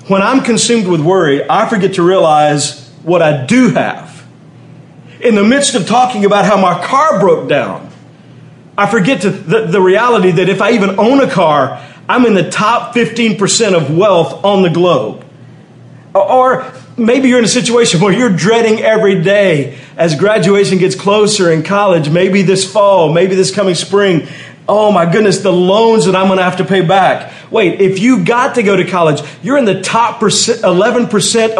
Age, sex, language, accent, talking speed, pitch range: 40-59, male, English, American, 180 wpm, 180-230 Hz